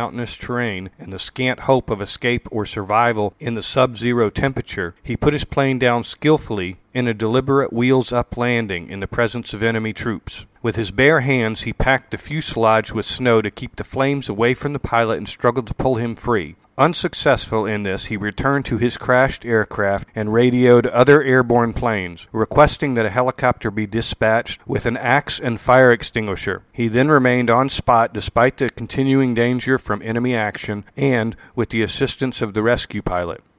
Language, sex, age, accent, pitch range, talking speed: English, male, 40-59, American, 105-125 Hz, 180 wpm